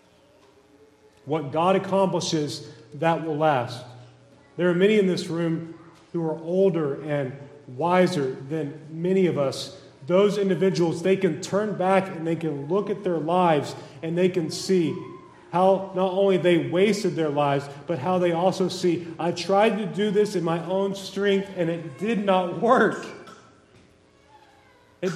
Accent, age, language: American, 40-59, English